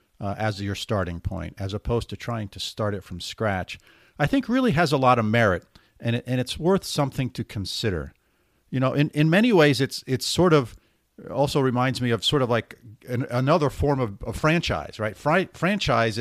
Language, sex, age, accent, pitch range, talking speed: English, male, 50-69, American, 105-150 Hz, 205 wpm